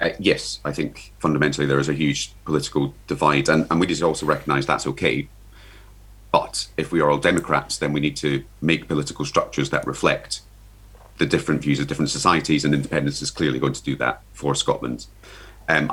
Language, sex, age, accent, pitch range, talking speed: English, male, 30-49, British, 70-85 Hz, 190 wpm